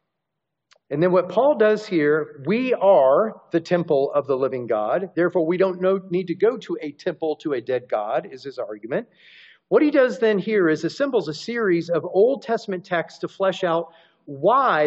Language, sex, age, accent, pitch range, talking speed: English, male, 40-59, American, 150-200 Hz, 190 wpm